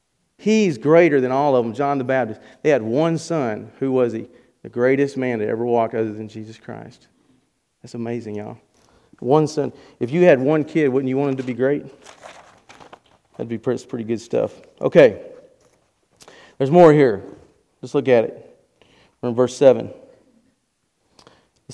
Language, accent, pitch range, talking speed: English, American, 125-160 Hz, 165 wpm